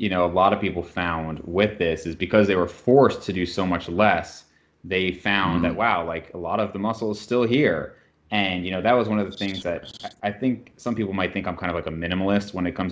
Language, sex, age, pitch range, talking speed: English, male, 30-49, 85-100 Hz, 265 wpm